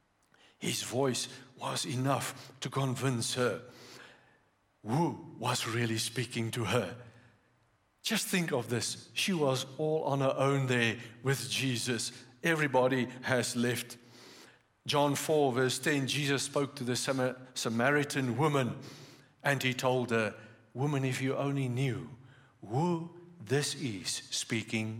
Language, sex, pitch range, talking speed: English, male, 125-180 Hz, 125 wpm